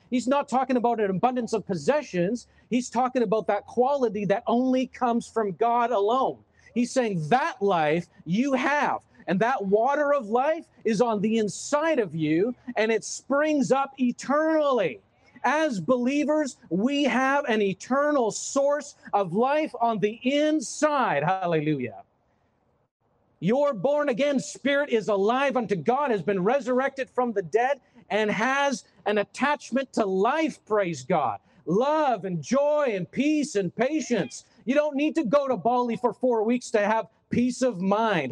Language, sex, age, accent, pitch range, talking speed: English, male, 40-59, American, 210-270 Hz, 155 wpm